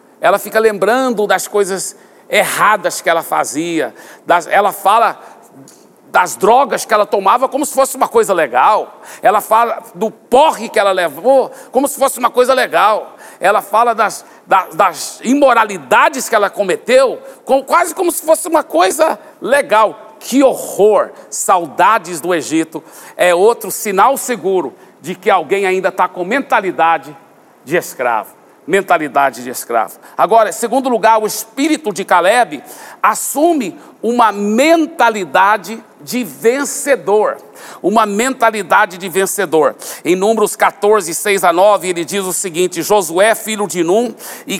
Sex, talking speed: male, 140 wpm